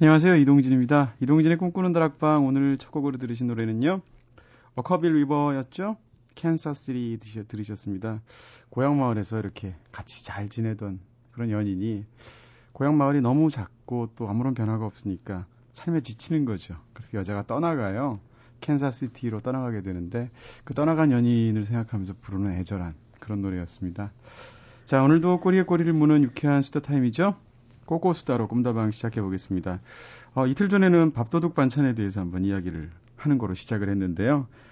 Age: 30-49